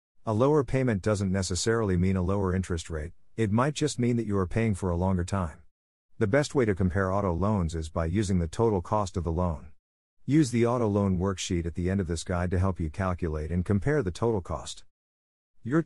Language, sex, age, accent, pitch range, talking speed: English, male, 50-69, American, 85-115 Hz, 225 wpm